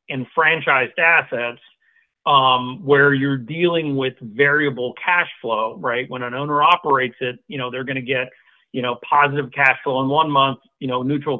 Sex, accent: male, American